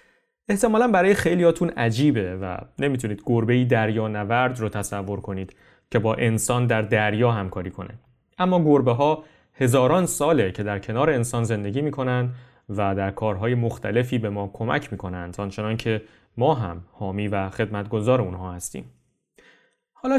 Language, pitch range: Persian, 105-135 Hz